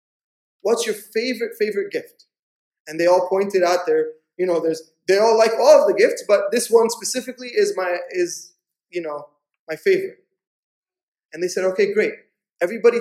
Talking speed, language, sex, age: 175 wpm, English, male, 20-39